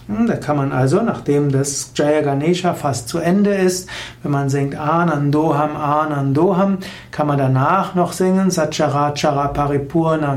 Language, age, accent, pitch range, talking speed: German, 60-79, German, 140-175 Hz, 140 wpm